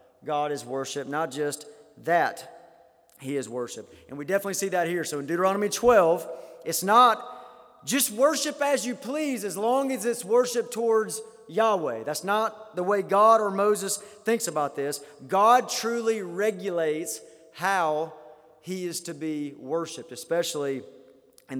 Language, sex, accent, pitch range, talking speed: English, male, American, 160-225 Hz, 150 wpm